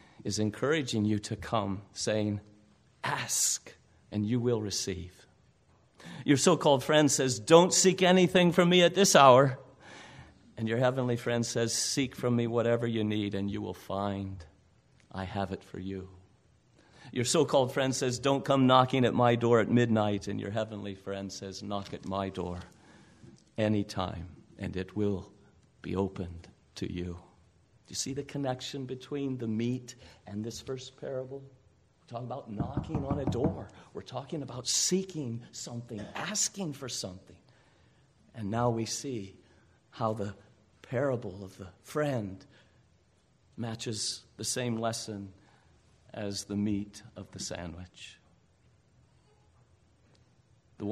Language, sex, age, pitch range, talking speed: English, male, 50-69, 100-125 Hz, 140 wpm